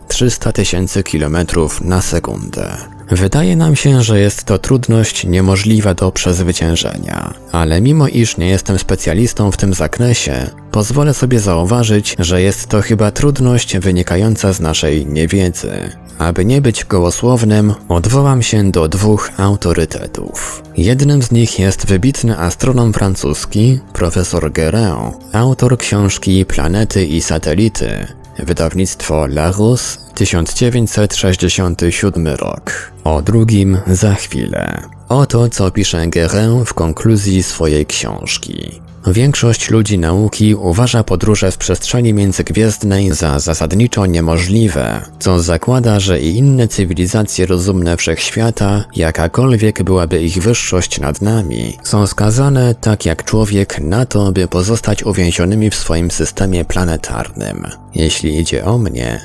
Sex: male